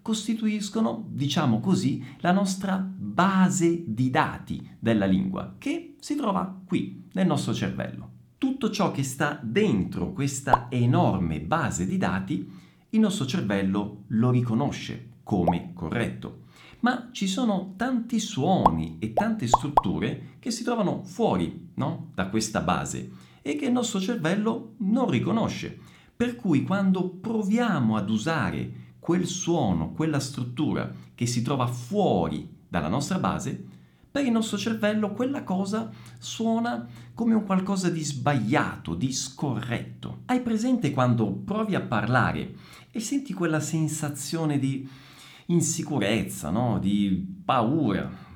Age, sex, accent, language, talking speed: 50-69, male, native, Italian, 125 wpm